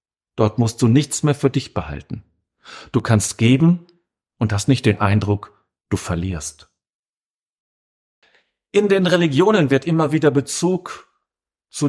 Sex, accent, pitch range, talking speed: male, German, 110-160 Hz, 130 wpm